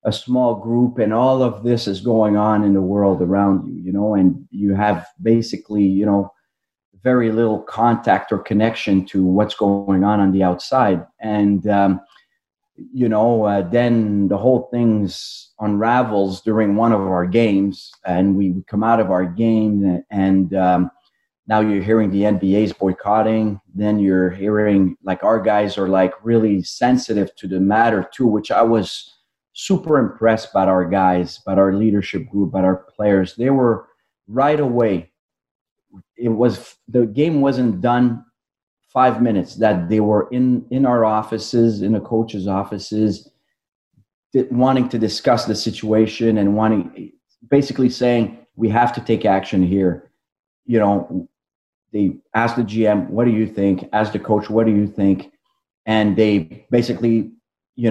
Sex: male